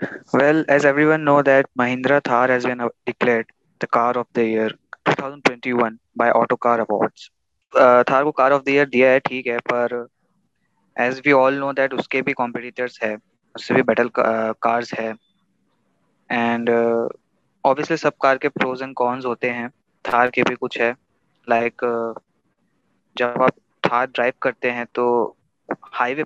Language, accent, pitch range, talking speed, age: Hindi, native, 120-135 Hz, 155 wpm, 20-39